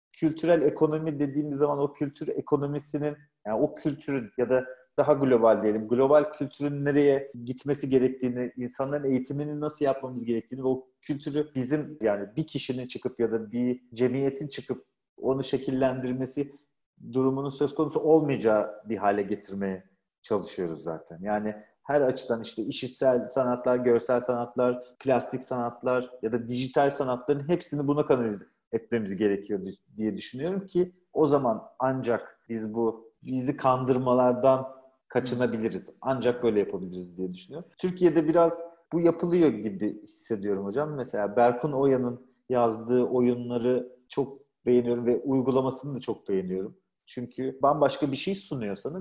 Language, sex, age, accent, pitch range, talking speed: Turkish, male, 40-59, native, 120-145 Hz, 135 wpm